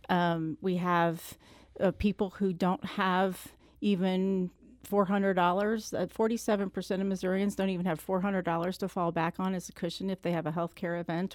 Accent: American